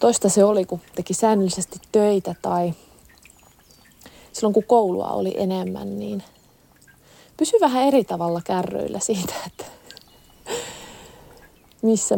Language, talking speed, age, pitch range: Finnish, 110 wpm, 30-49, 180-220 Hz